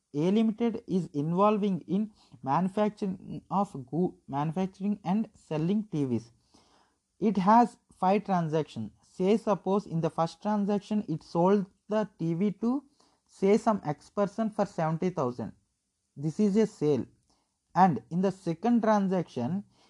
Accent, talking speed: native, 130 wpm